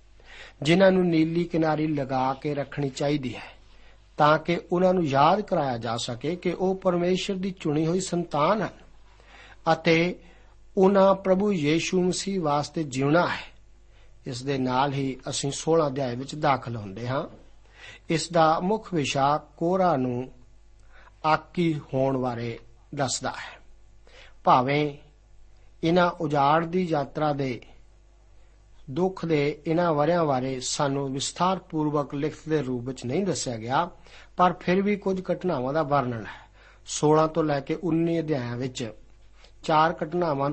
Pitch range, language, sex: 130-170 Hz, Punjabi, male